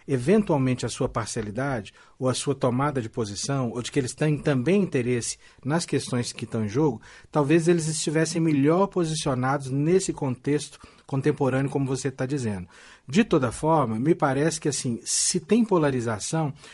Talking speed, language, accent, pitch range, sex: 160 wpm, Portuguese, Brazilian, 140-190 Hz, male